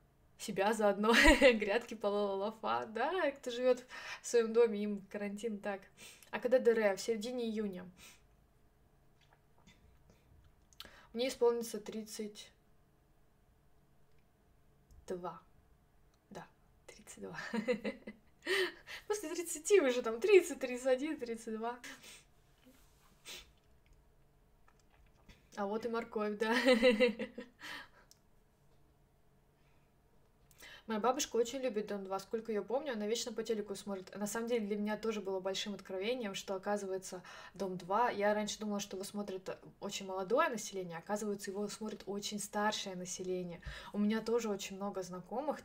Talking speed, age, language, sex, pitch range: 115 wpm, 20-39, Russian, female, 195-235 Hz